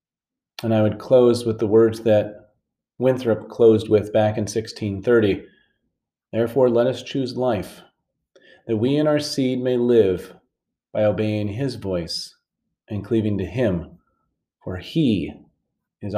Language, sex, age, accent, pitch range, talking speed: English, male, 30-49, American, 105-120 Hz, 135 wpm